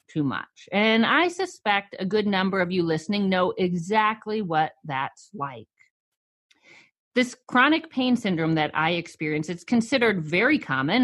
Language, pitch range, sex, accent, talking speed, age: English, 180-250 Hz, female, American, 145 wpm, 40-59